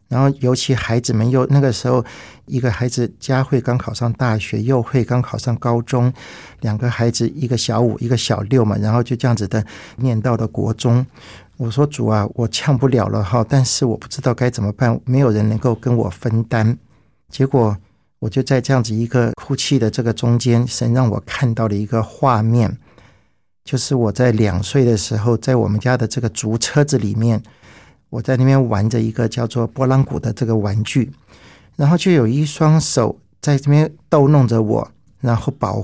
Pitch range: 115-135 Hz